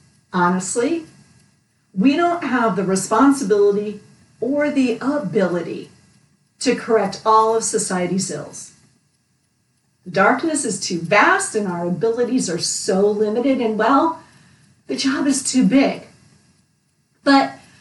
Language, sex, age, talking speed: English, female, 50-69, 115 wpm